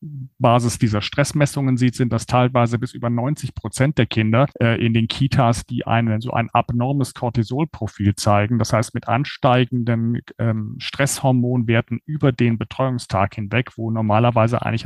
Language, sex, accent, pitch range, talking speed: German, male, German, 115-135 Hz, 150 wpm